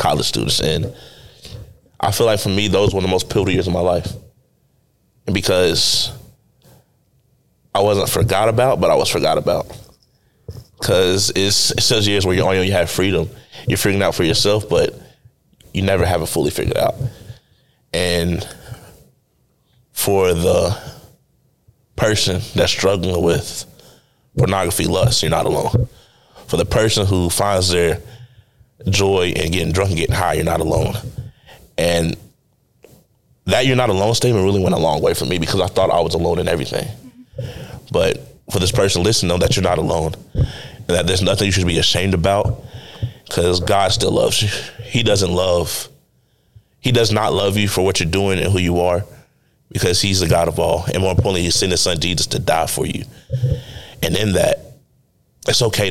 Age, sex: 20-39, male